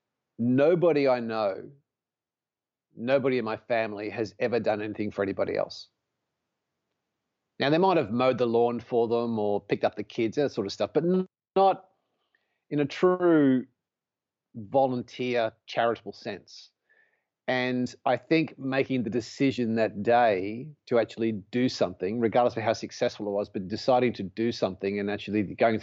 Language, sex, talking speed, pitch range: English, male, 155 wpm, 110-130 Hz